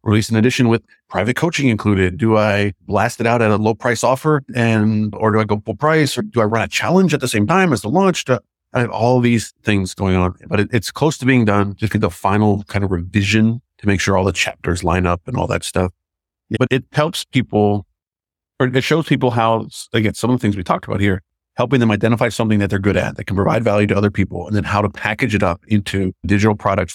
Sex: male